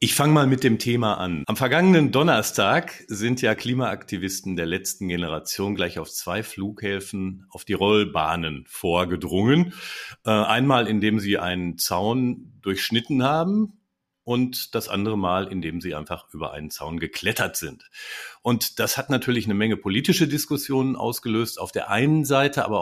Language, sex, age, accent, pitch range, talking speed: German, male, 50-69, German, 95-125 Hz, 150 wpm